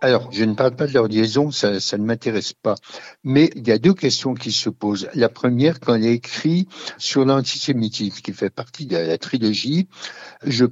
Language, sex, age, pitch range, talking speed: French, male, 60-79, 110-145 Hz, 200 wpm